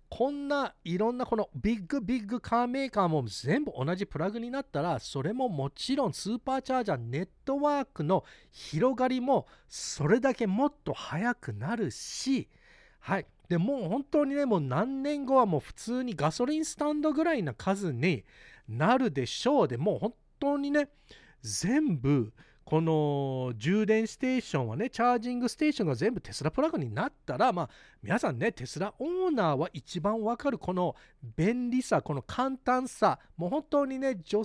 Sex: male